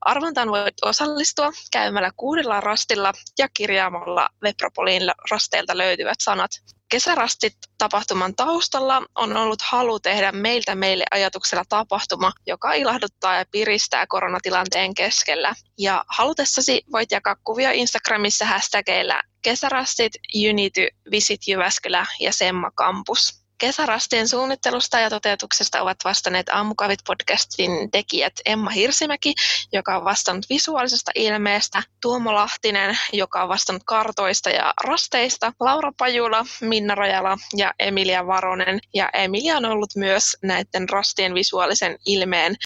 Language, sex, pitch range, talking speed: Finnish, female, 195-245 Hz, 115 wpm